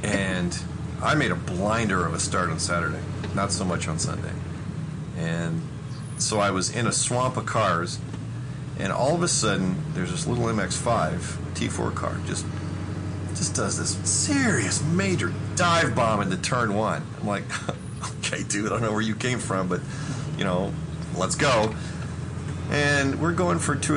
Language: English